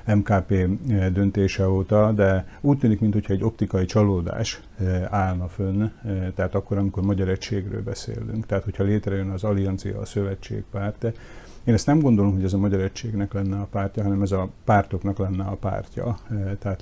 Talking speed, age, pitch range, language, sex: 160 wpm, 50-69, 95-105 Hz, Hungarian, male